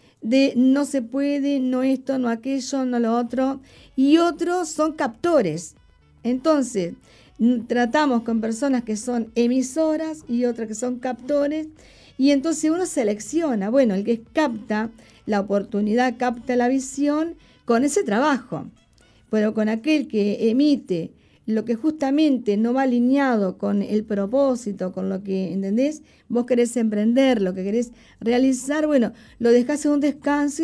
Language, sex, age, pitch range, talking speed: Spanish, female, 40-59, 215-285 Hz, 145 wpm